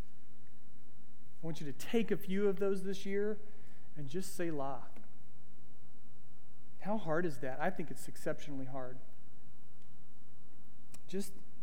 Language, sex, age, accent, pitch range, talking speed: English, male, 40-59, American, 145-195 Hz, 130 wpm